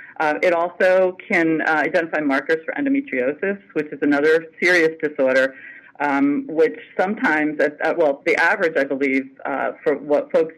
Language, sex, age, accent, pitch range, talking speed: English, female, 40-59, American, 150-200 Hz, 160 wpm